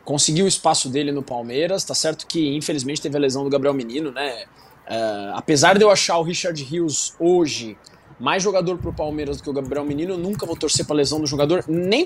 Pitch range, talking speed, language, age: 150-205 Hz, 220 wpm, Portuguese, 20-39